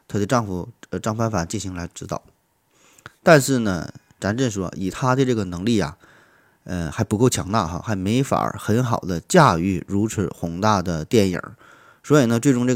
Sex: male